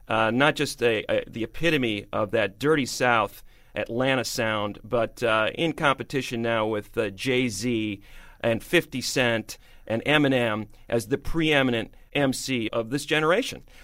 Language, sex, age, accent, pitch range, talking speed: English, male, 40-59, American, 115-150 Hz, 135 wpm